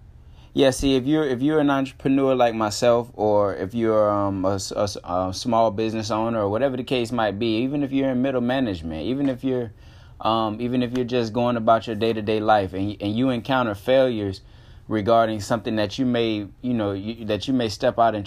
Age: 20-39